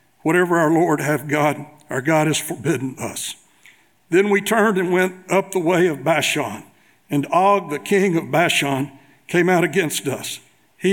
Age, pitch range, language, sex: 60-79, 150-180 Hz, English, male